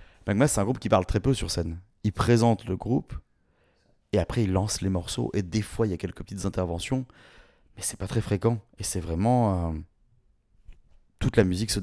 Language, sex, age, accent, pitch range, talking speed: French, male, 30-49, French, 95-115 Hz, 215 wpm